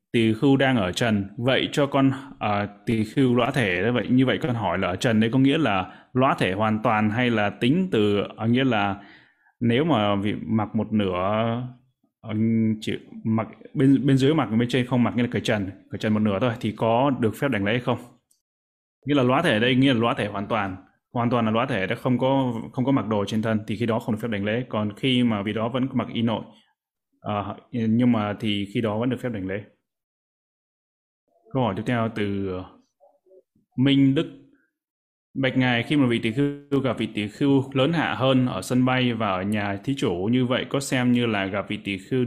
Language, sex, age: Vietnamese, male, 20-39